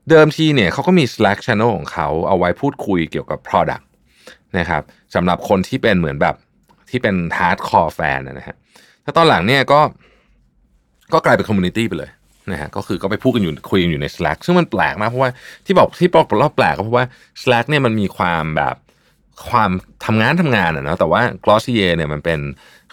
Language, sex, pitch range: Thai, male, 85-130 Hz